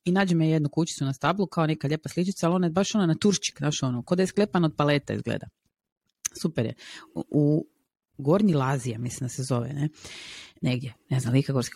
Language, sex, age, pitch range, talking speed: Croatian, female, 30-49, 140-195 Hz, 215 wpm